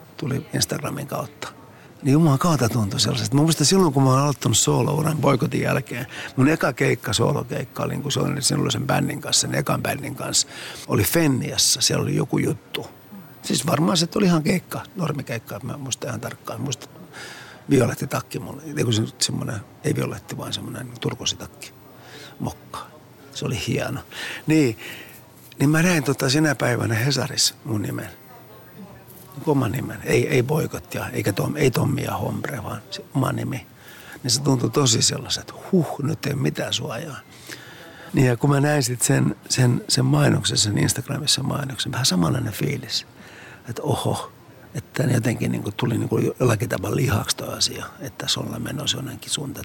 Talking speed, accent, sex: 160 wpm, native, male